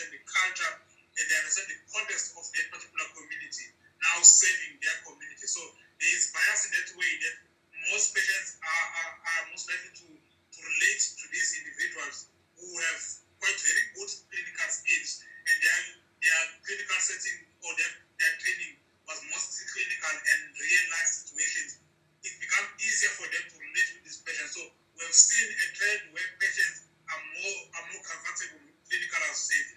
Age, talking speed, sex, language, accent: 30-49, 170 wpm, male, English, Nigerian